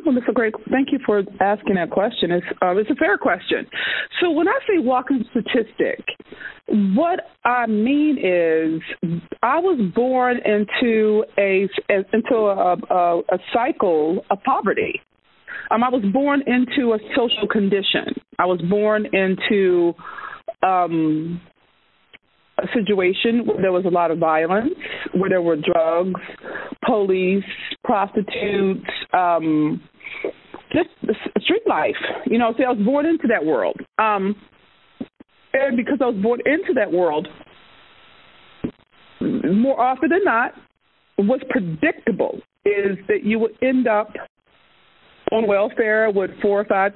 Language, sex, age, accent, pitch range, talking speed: English, female, 40-59, American, 190-255 Hz, 135 wpm